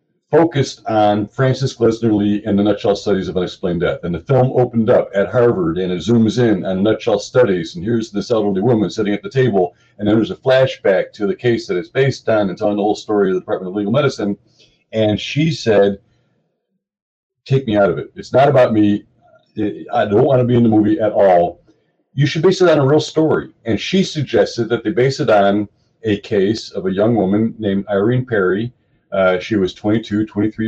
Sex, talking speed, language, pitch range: male, 215 wpm, English, 105-130 Hz